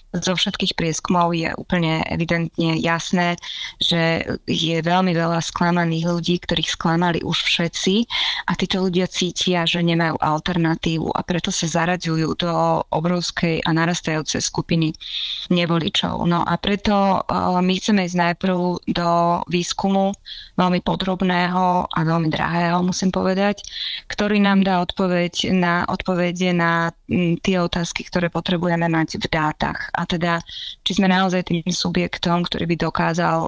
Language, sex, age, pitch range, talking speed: Slovak, female, 20-39, 170-185 Hz, 130 wpm